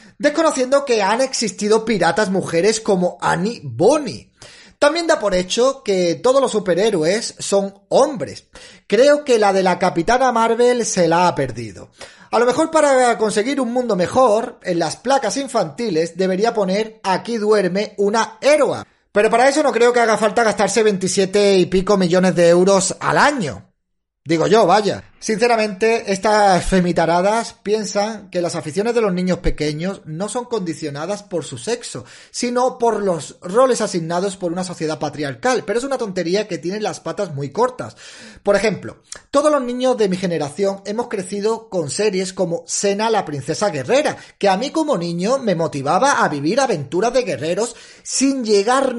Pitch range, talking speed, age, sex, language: 180-240 Hz, 165 wpm, 30-49, male, Spanish